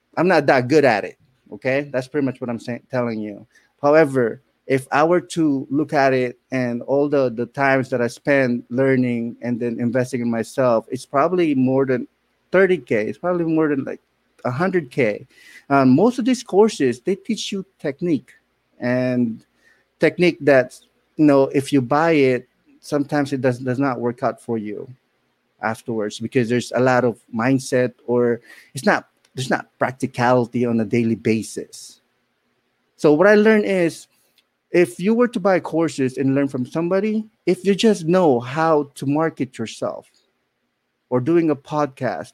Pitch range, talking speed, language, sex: 125-165 Hz, 170 wpm, English, male